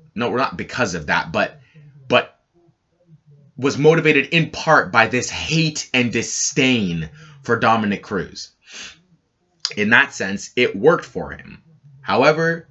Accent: American